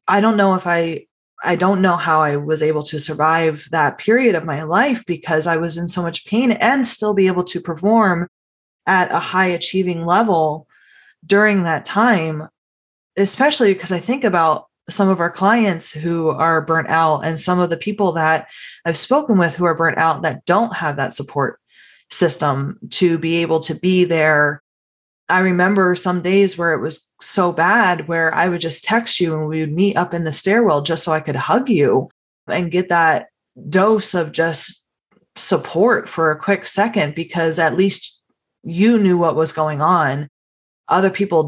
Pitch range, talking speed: 160-200 Hz, 185 wpm